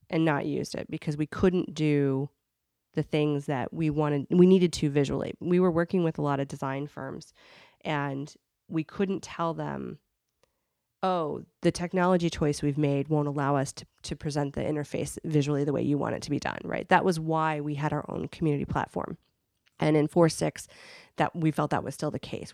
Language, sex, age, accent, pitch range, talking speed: English, female, 30-49, American, 150-180 Hz, 195 wpm